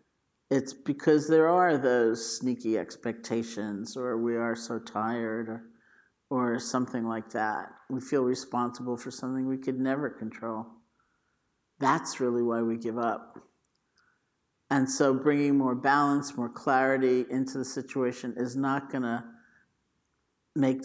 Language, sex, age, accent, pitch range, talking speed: English, male, 50-69, American, 115-135 Hz, 135 wpm